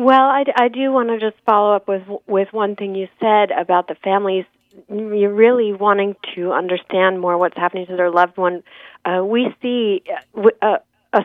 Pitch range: 170-210 Hz